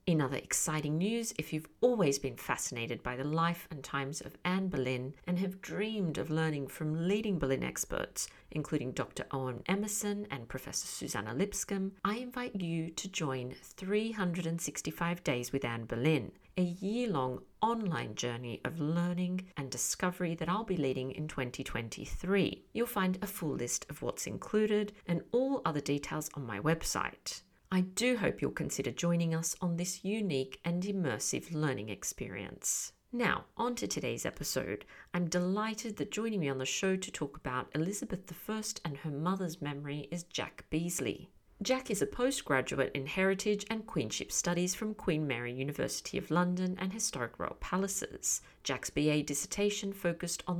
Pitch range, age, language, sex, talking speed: 140-195 Hz, 50-69, English, female, 160 wpm